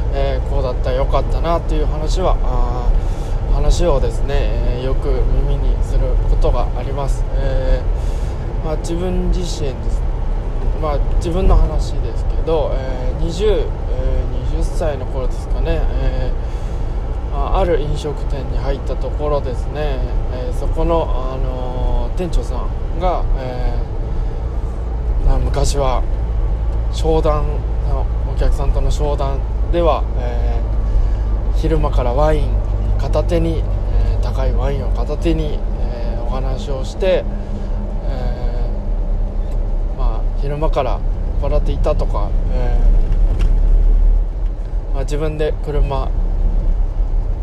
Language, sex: Japanese, male